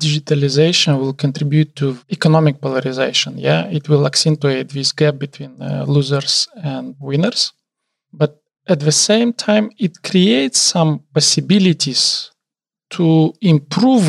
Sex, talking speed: male, 120 wpm